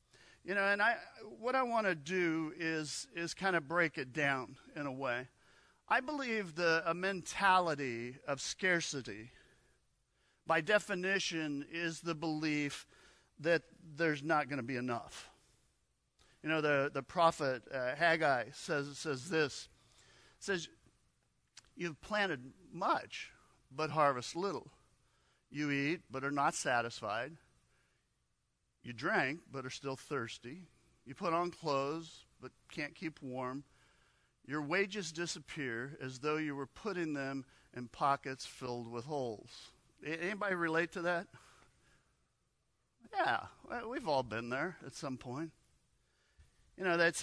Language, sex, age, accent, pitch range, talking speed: English, male, 50-69, American, 135-175 Hz, 130 wpm